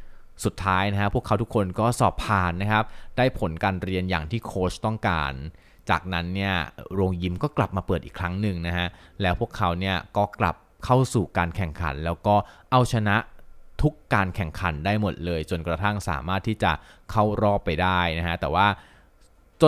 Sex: male